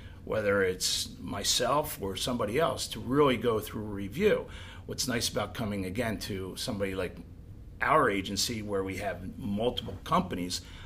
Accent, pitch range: American, 95-125 Hz